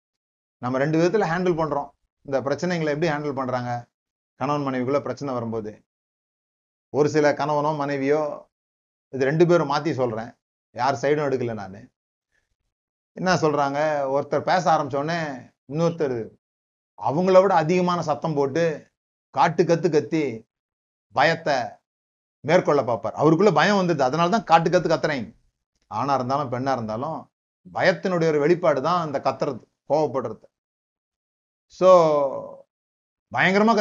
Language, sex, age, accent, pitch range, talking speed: Tamil, male, 30-49, native, 120-170 Hz, 115 wpm